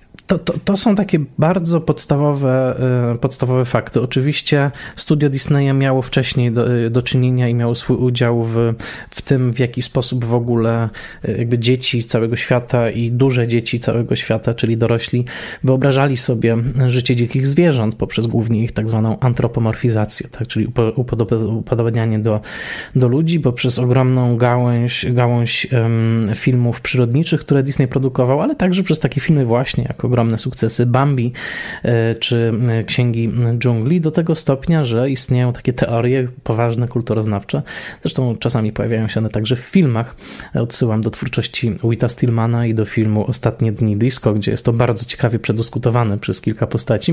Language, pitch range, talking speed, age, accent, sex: Polish, 115-130 Hz, 150 wpm, 20-39, native, male